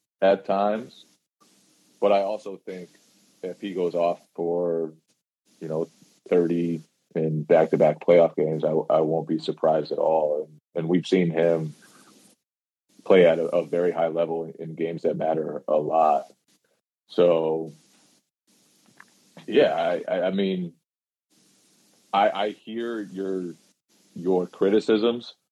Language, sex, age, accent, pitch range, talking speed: English, male, 30-49, American, 80-95 Hz, 135 wpm